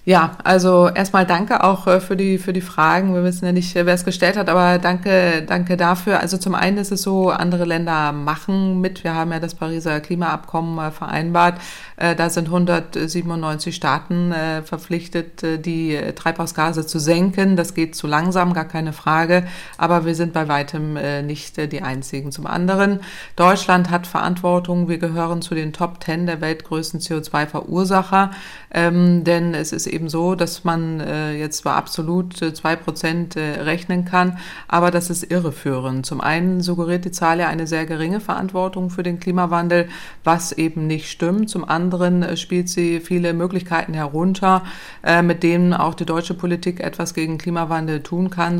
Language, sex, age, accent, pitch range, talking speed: German, female, 30-49, German, 160-180 Hz, 160 wpm